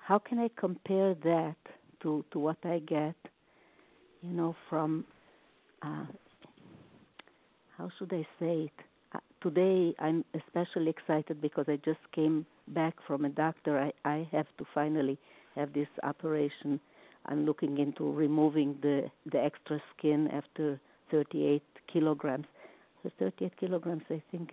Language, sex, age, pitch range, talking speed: English, female, 60-79, 150-170 Hz, 140 wpm